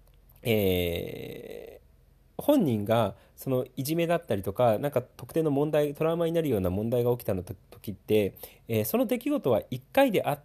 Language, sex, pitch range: Japanese, male, 100-165 Hz